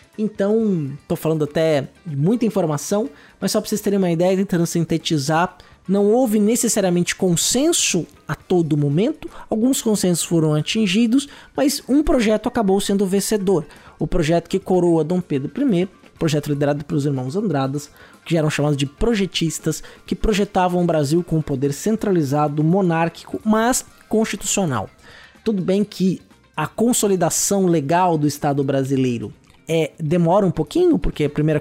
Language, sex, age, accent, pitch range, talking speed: Portuguese, male, 20-39, Brazilian, 155-205 Hz, 145 wpm